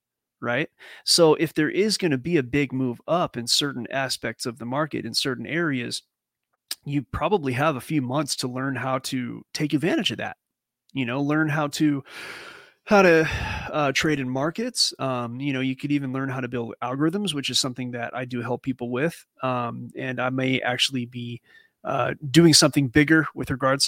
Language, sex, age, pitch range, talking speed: English, male, 30-49, 125-150 Hz, 195 wpm